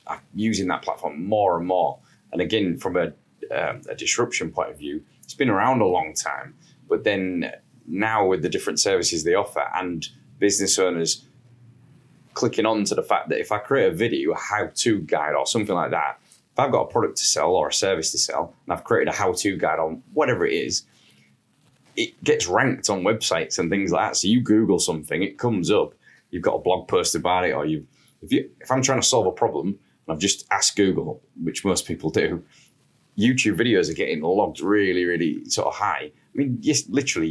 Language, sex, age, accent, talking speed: English, male, 10-29, British, 210 wpm